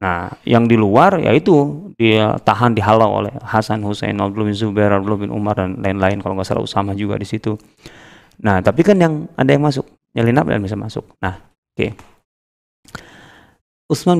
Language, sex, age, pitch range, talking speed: Indonesian, male, 30-49, 95-125 Hz, 175 wpm